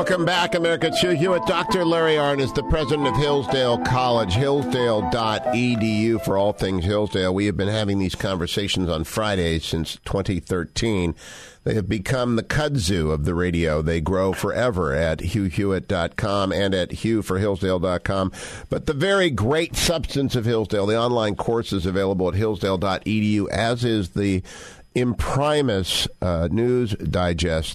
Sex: male